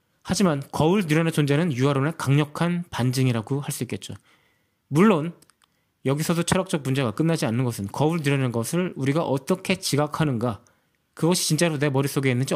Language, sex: Korean, male